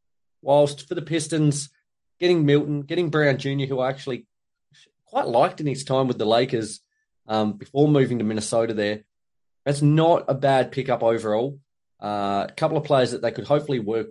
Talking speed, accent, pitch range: 180 wpm, Australian, 120-145 Hz